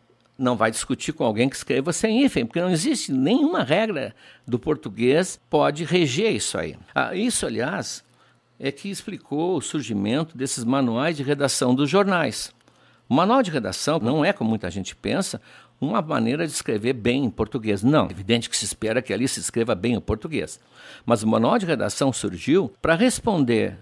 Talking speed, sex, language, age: 180 wpm, male, Portuguese, 60-79